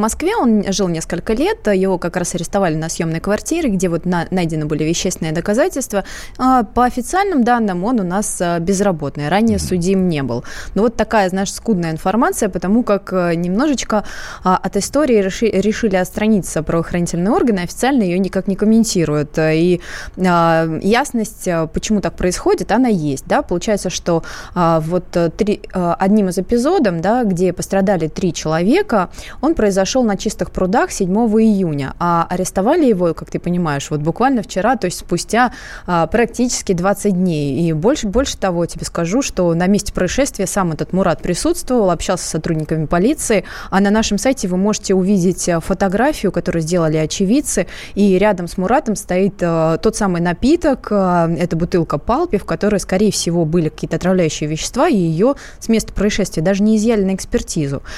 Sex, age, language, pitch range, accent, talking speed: female, 20-39, Russian, 175-220 Hz, native, 160 wpm